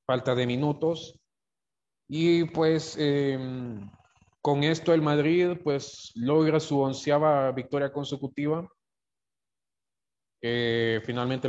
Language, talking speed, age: English, 95 wpm, 30-49